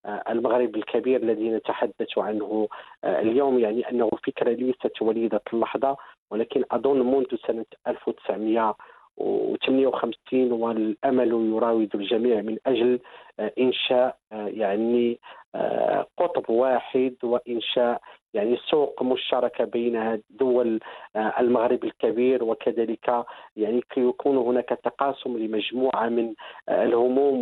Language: English